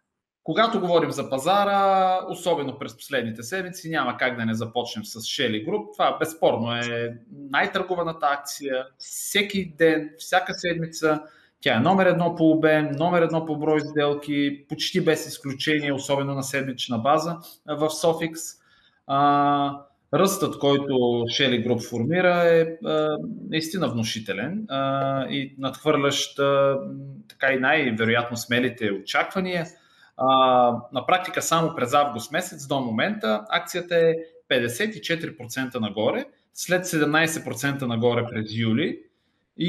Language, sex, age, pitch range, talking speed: Bulgarian, male, 30-49, 130-165 Hz, 120 wpm